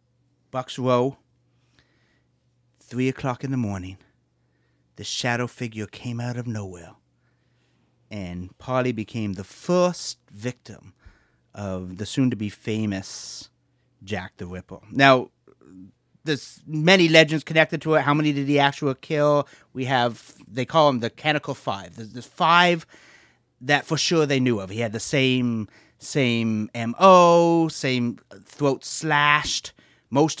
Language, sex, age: English, male, 30-49